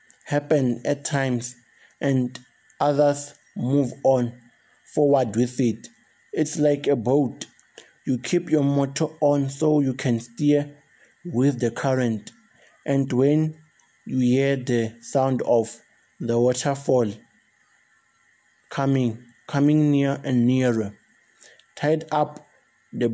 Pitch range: 125-150 Hz